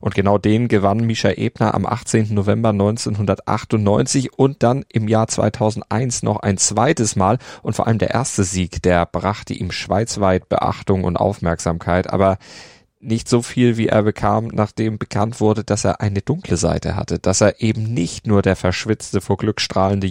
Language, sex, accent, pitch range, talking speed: German, male, German, 95-110 Hz, 175 wpm